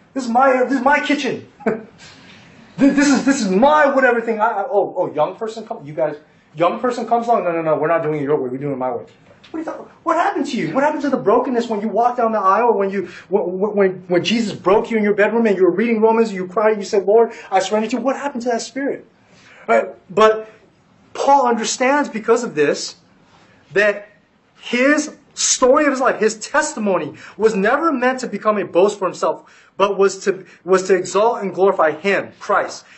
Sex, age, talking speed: male, 20-39, 225 wpm